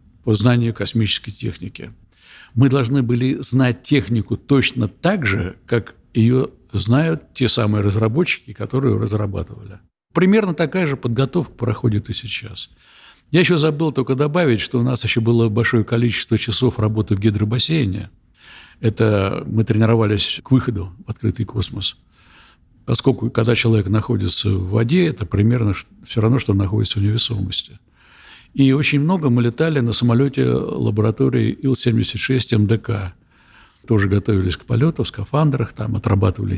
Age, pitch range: 60-79, 105-130 Hz